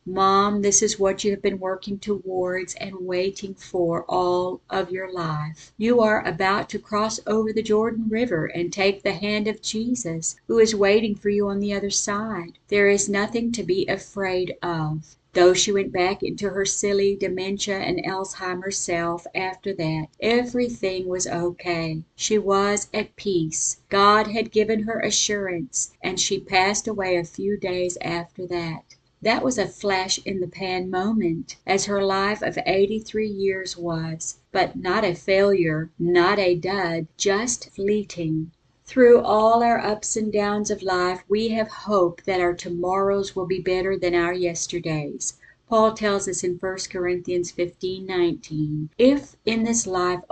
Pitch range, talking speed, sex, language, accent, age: 175-205 Hz, 165 wpm, female, English, American, 50-69